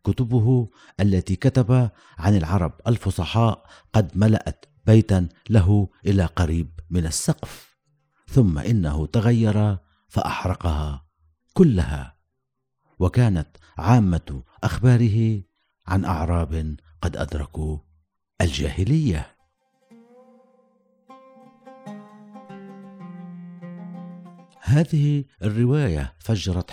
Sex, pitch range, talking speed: male, 85-125 Hz, 65 wpm